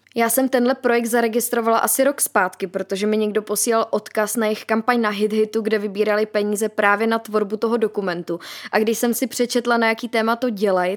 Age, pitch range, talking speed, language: 20-39, 210-235 Hz, 200 wpm, Czech